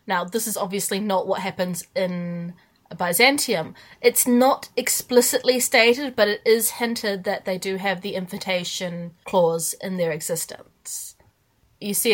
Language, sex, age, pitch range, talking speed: English, female, 20-39, 180-210 Hz, 145 wpm